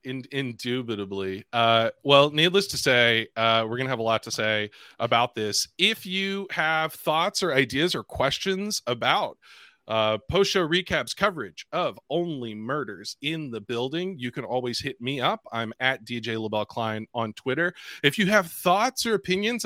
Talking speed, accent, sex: 170 wpm, American, male